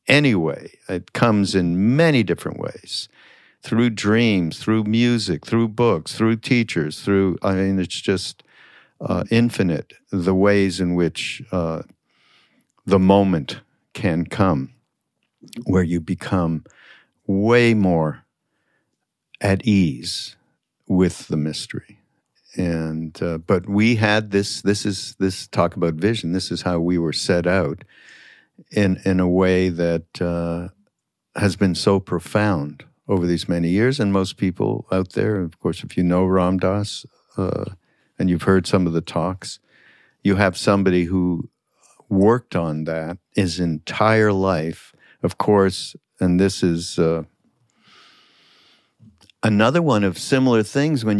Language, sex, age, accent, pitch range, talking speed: English, male, 60-79, American, 85-105 Hz, 135 wpm